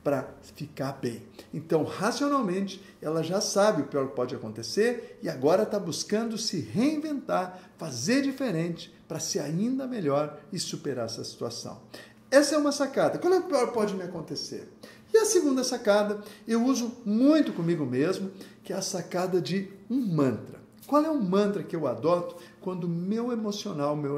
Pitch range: 170-260 Hz